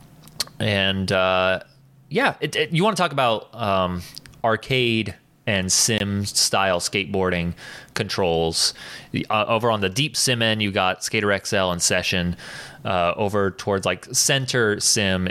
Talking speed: 145 wpm